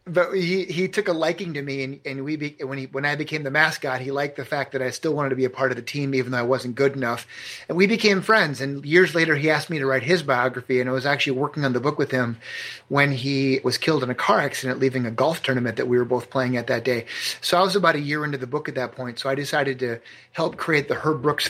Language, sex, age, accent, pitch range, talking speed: English, male, 30-49, American, 130-150 Hz, 295 wpm